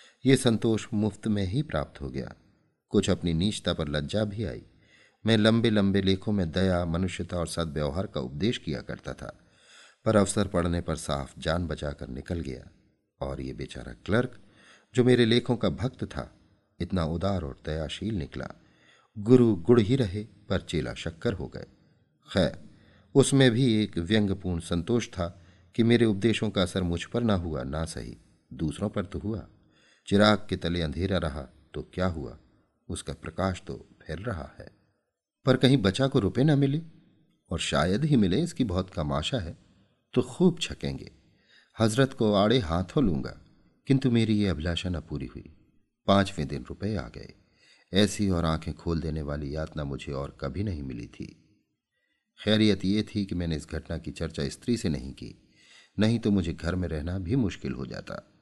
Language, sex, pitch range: Hindi, male, 80-110 Hz